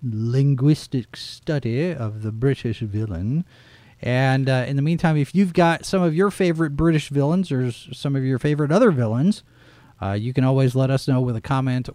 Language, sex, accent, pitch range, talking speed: English, male, American, 120-155 Hz, 185 wpm